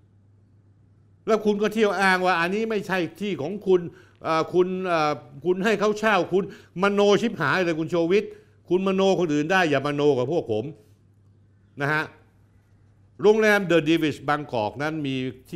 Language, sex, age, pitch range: Thai, male, 60-79, 105-175 Hz